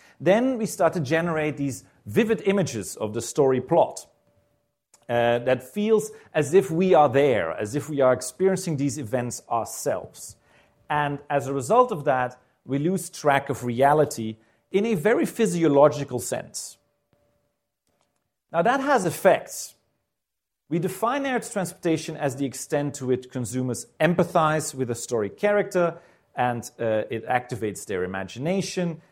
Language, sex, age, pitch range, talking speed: Dutch, male, 40-59, 120-170 Hz, 140 wpm